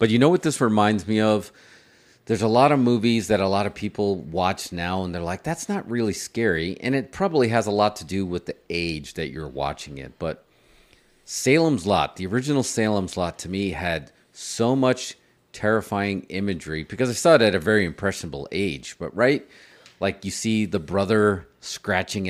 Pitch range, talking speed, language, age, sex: 90-125 Hz, 195 wpm, English, 40-59, male